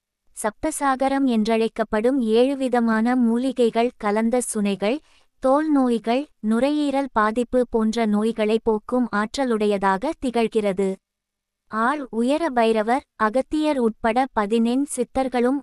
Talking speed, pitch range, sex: 90 wpm, 220-265 Hz, female